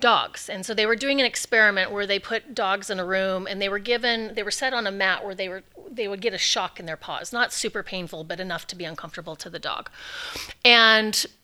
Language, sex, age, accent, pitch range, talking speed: English, female, 30-49, American, 185-235 Hz, 250 wpm